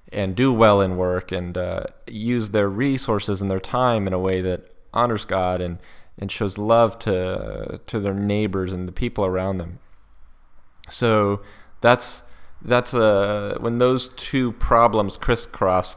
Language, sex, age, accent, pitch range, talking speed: English, male, 20-39, American, 90-110 Hz, 160 wpm